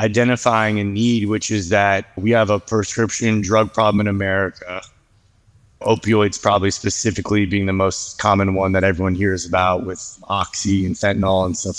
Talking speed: 165 wpm